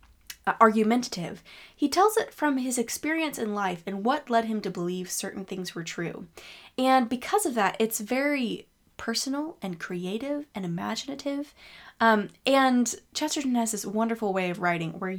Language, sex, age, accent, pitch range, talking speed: English, female, 10-29, American, 185-245 Hz, 160 wpm